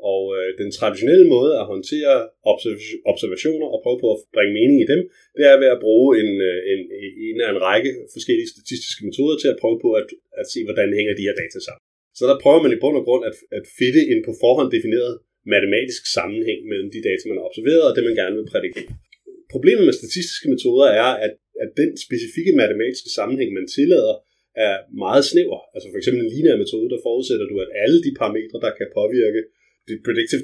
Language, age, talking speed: Danish, 30-49, 205 wpm